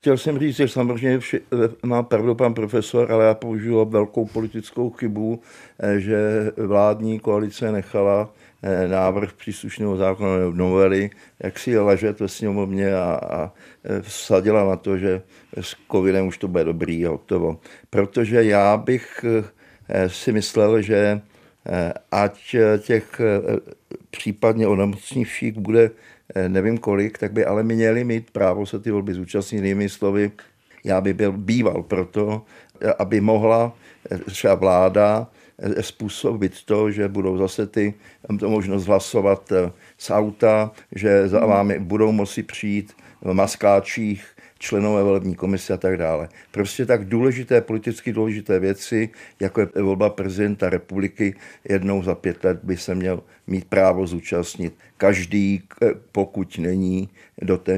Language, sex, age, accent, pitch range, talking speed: Czech, male, 50-69, native, 95-110 Hz, 130 wpm